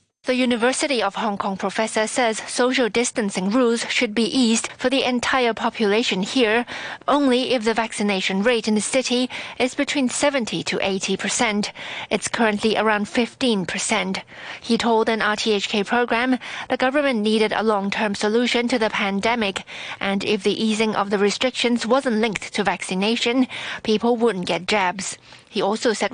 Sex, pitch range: female, 200-240 Hz